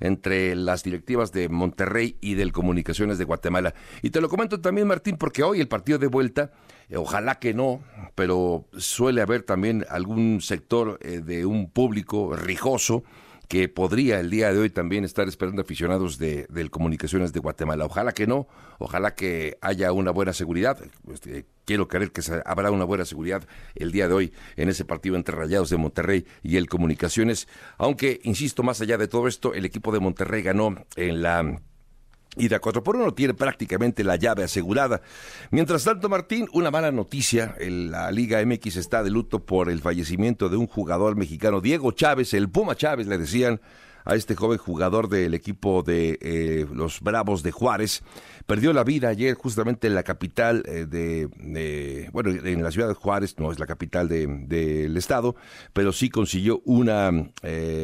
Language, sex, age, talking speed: Spanish, male, 60-79, 175 wpm